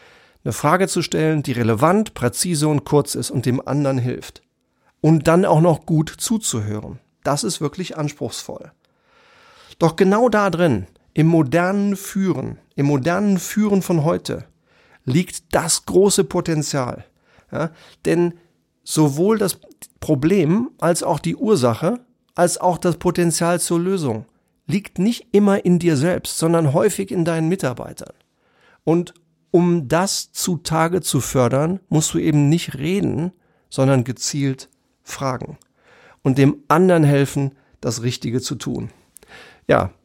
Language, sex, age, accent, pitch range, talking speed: German, male, 40-59, German, 140-185 Hz, 130 wpm